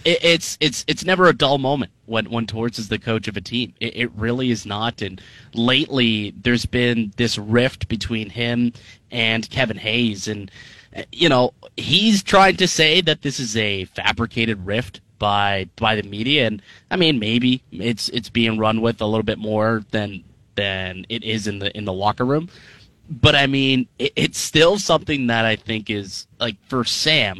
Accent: American